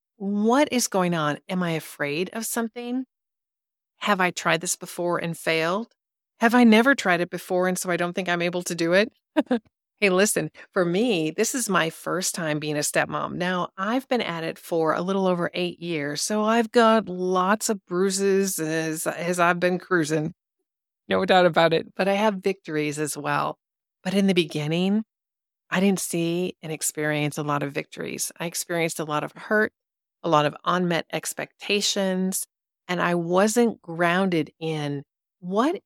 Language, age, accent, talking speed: English, 40-59, American, 175 wpm